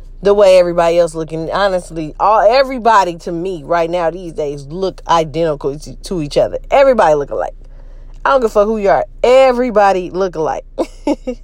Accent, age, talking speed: American, 10-29, 175 wpm